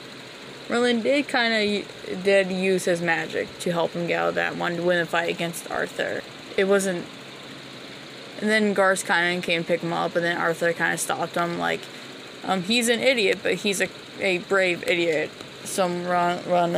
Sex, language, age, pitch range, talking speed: female, English, 20-39, 170-205 Hz, 195 wpm